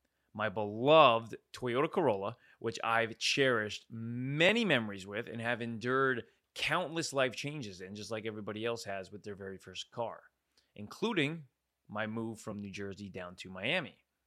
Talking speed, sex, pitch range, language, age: 150 wpm, male, 105-140 Hz, English, 20-39